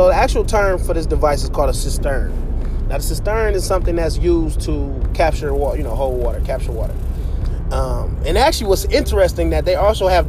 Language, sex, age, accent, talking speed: English, male, 20-39, American, 210 wpm